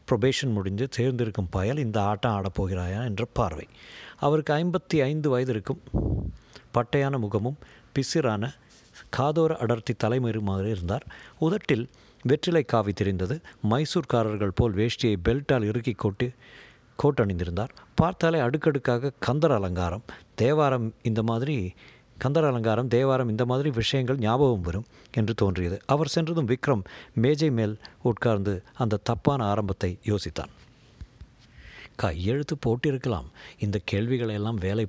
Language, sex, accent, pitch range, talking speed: Tamil, male, native, 100-130 Hz, 110 wpm